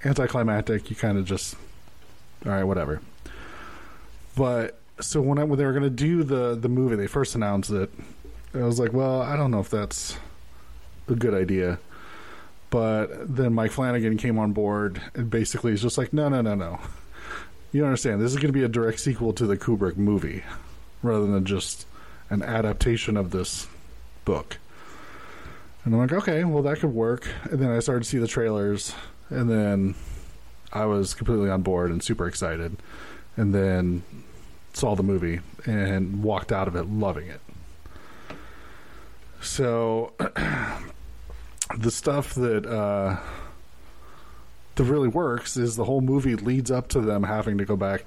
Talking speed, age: 165 wpm, 20-39